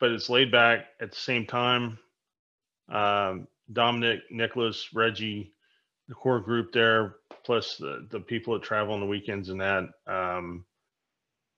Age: 30-49